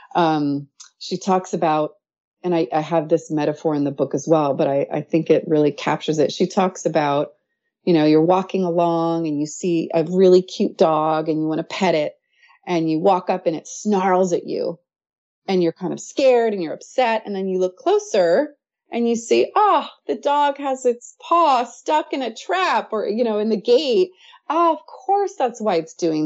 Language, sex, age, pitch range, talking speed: English, female, 30-49, 160-225 Hz, 210 wpm